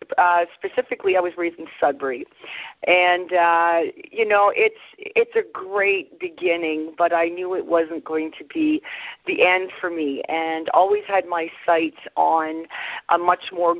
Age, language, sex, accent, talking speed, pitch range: 40-59, English, female, American, 160 wpm, 165-235 Hz